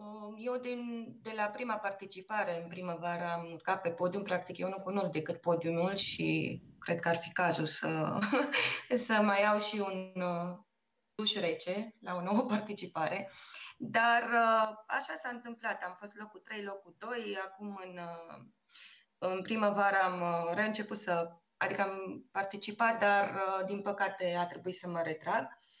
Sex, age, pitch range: female, 20-39, 180-230 Hz